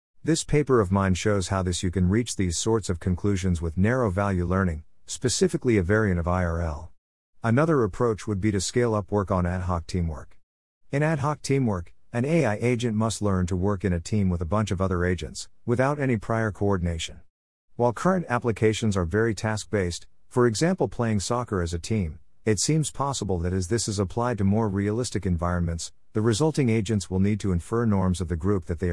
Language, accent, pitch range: English, American, 90-115 Hz